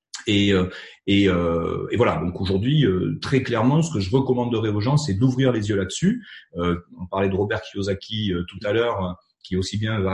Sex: male